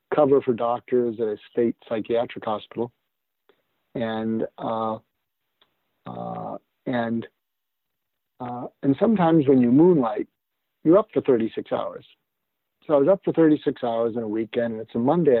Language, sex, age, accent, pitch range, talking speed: English, male, 50-69, American, 120-150 Hz, 145 wpm